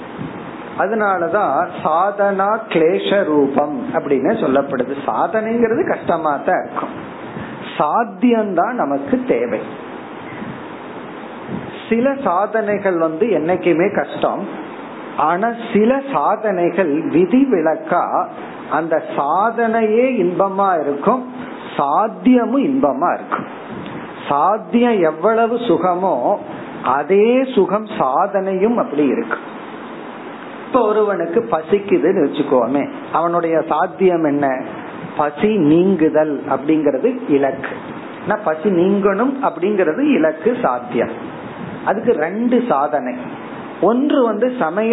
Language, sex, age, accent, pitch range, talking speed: Tamil, male, 50-69, native, 170-235 Hz, 50 wpm